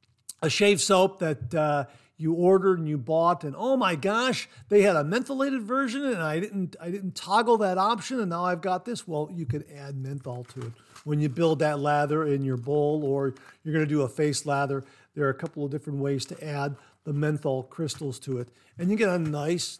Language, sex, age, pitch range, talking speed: English, male, 50-69, 140-180 Hz, 225 wpm